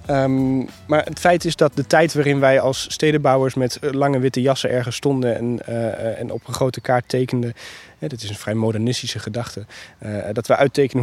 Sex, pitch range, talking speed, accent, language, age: male, 115-140 Hz, 195 wpm, Dutch, Dutch, 20-39